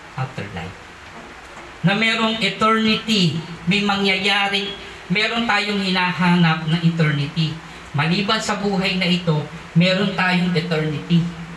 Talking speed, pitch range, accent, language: 100 wpm, 150-190 Hz, native, Filipino